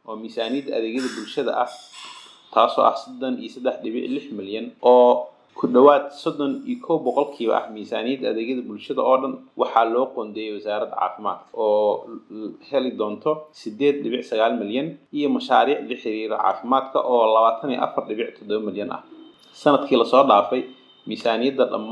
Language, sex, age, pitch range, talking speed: English, male, 30-49, 110-155 Hz, 110 wpm